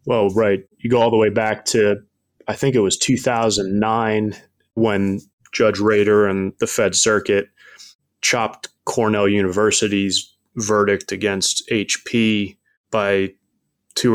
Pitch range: 100-110 Hz